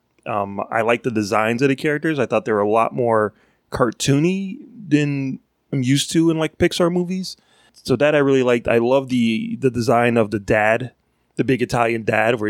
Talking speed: 200 wpm